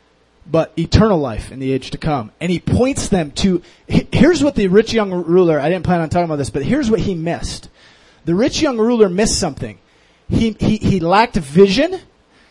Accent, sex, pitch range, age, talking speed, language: American, male, 175-230 Hz, 30-49, 200 wpm, English